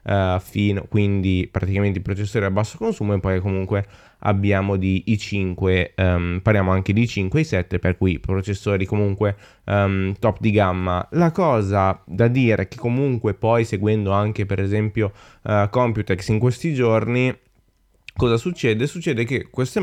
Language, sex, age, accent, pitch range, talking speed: Italian, male, 20-39, native, 95-115 Hz, 150 wpm